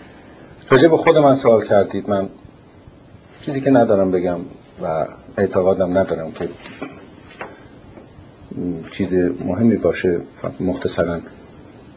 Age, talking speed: 60-79, 90 wpm